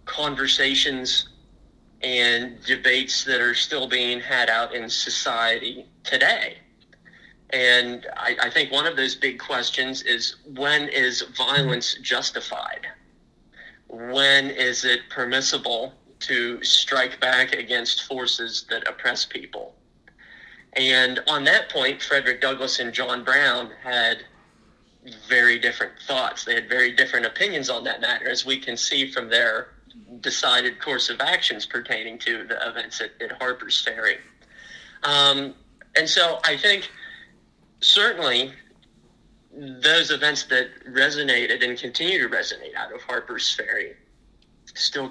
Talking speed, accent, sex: 130 wpm, American, male